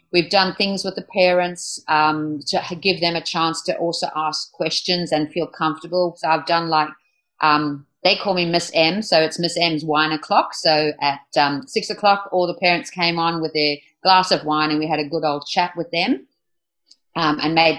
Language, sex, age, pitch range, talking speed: English, female, 50-69, 155-175 Hz, 210 wpm